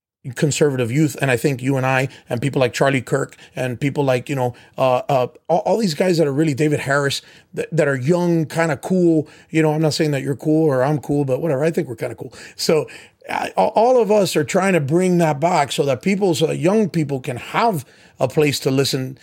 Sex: male